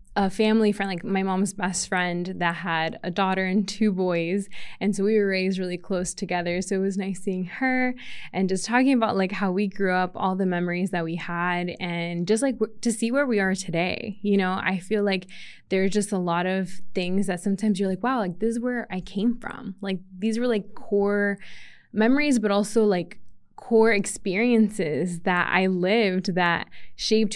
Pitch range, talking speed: 185-215 Hz, 200 wpm